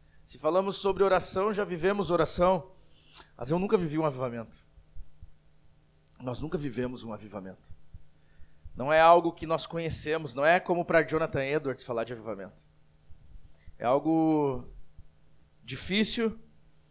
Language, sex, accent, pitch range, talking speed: Portuguese, male, Brazilian, 125-185 Hz, 130 wpm